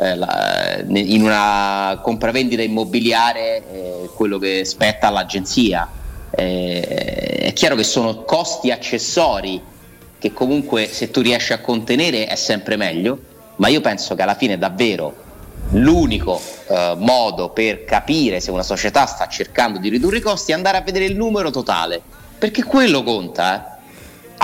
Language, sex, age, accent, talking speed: Italian, male, 30-49, native, 145 wpm